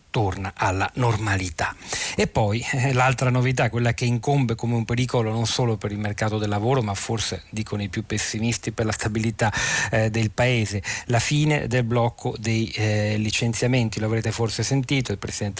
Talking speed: 175 wpm